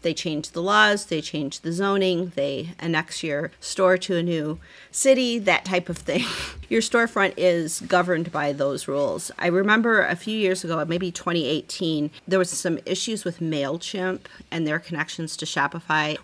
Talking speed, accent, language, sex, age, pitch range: 170 wpm, American, English, female, 40-59, 150-185 Hz